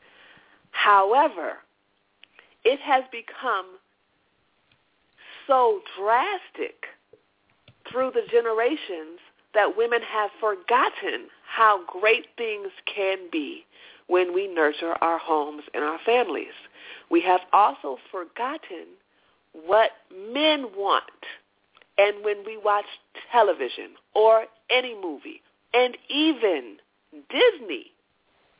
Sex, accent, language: female, American, English